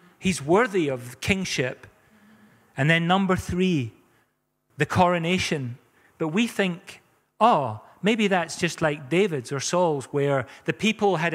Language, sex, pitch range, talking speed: English, male, 135-190 Hz, 130 wpm